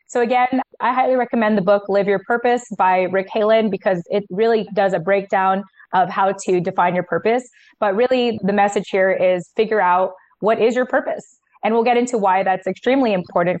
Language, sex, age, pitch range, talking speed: English, female, 20-39, 195-225 Hz, 200 wpm